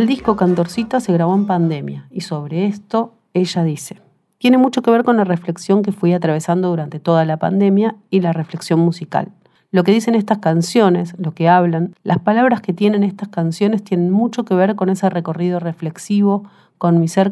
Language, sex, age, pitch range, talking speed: Spanish, female, 40-59, 165-205 Hz, 190 wpm